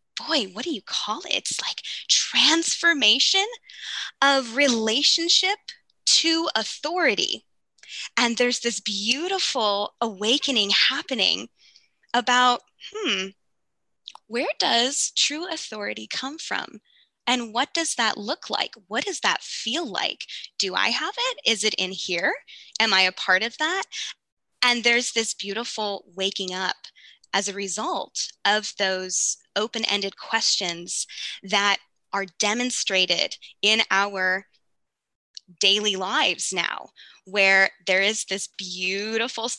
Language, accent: English, American